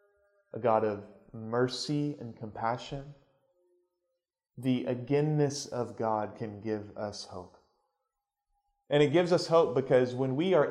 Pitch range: 125-160 Hz